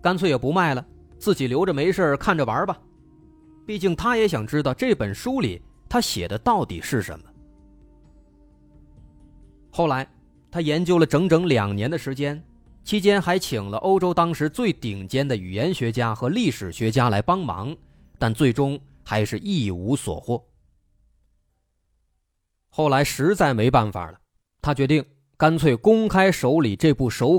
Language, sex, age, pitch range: Chinese, male, 30-49, 115-180 Hz